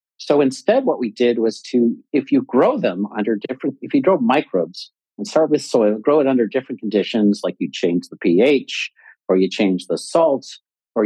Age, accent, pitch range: 50-69, American, 105-155 Hz